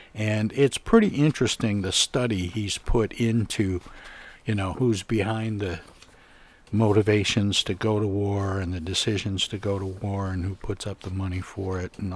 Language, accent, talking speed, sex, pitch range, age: English, American, 175 wpm, male, 95-115 Hz, 60-79